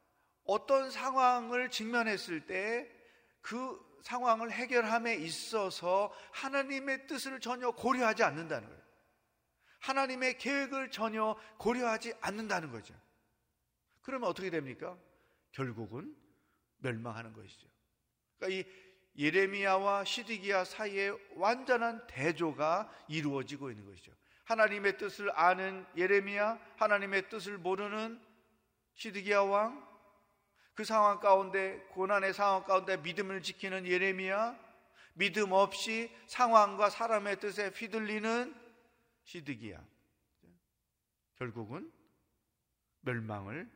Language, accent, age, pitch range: Korean, native, 40-59, 160-225 Hz